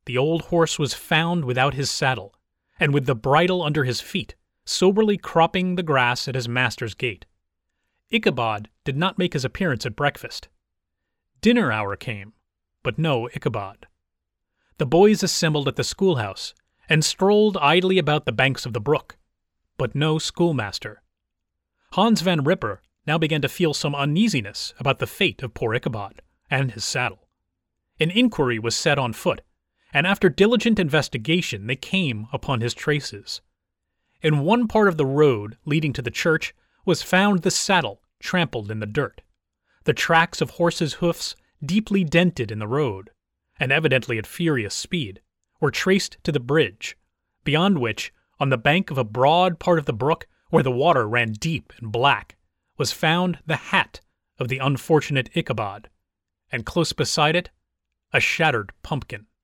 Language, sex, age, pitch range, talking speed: English, male, 30-49, 115-170 Hz, 160 wpm